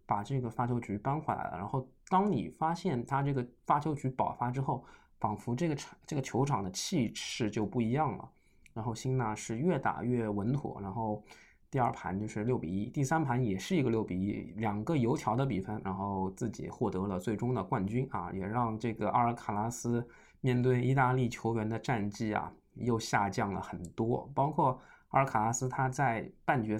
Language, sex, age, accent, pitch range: Chinese, male, 20-39, native, 105-125 Hz